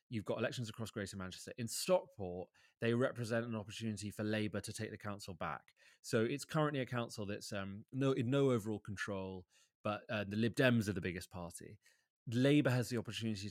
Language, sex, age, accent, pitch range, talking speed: English, male, 30-49, British, 100-120 Hz, 195 wpm